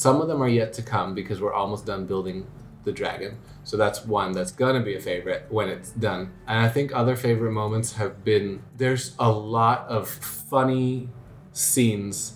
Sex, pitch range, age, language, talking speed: male, 110-135 Hz, 20-39, English, 190 wpm